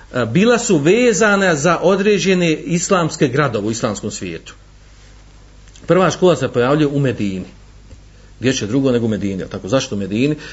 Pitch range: 120-175 Hz